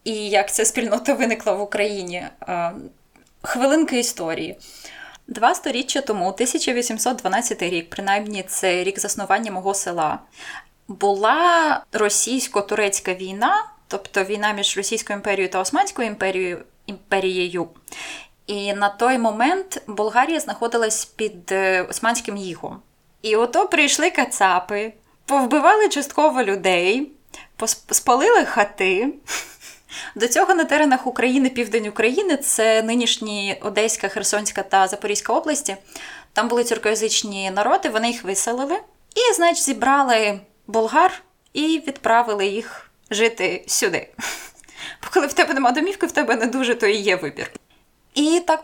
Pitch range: 205-275 Hz